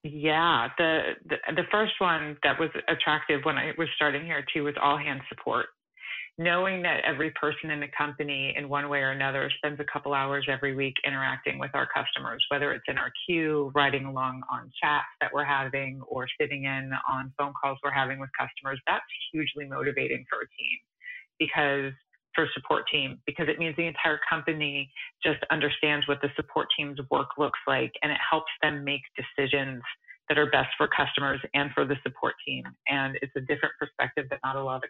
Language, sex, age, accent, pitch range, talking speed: English, female, 30-49, American, 135-155 Hz, 195 wpm